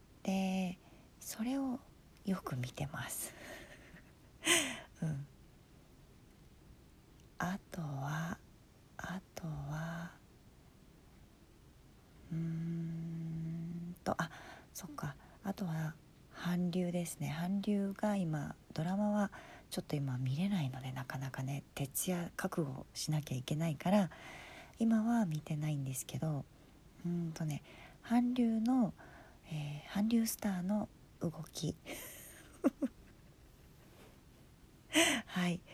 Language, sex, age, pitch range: Japanese, female, 40-59, 155-205 Hz